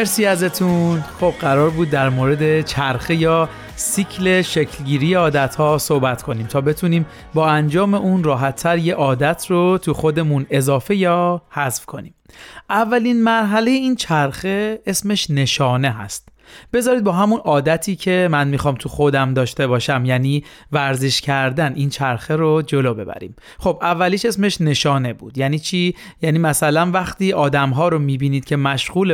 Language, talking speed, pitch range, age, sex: Persian, 150 wpm, 140-180 Hz, 40-59, male